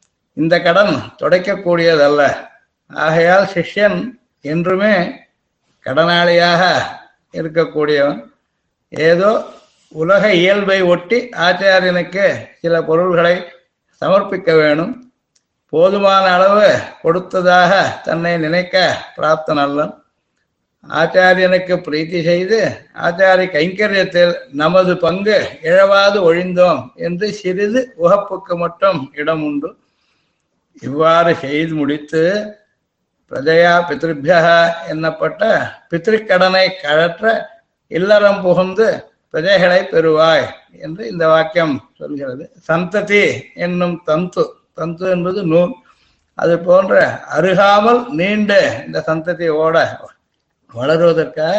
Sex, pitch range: male, 160-195 Hz